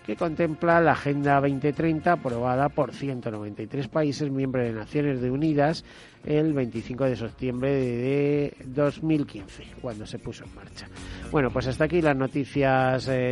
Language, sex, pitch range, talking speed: Spanish, male, 120-160 Hz, 140 wpm